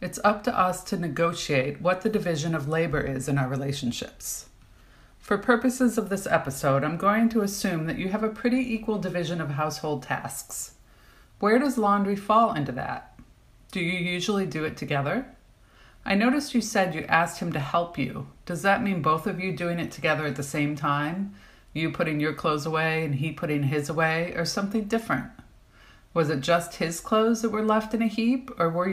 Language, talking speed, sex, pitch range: English, 195 wpm, female, 150-200 Hz